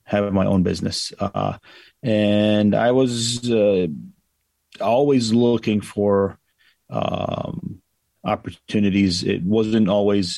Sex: male